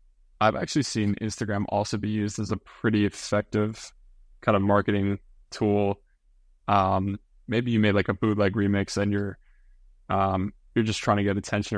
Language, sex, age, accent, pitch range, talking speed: English, male, 20-39, American, 95-110 Hz, 165 wpm